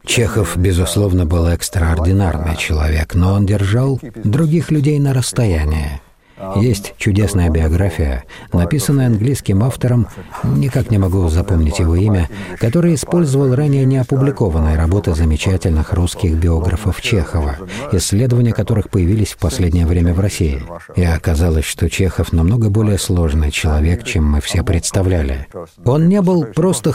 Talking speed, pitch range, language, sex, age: 125 wpm, 85-125 Hz, Russian, male, 50-69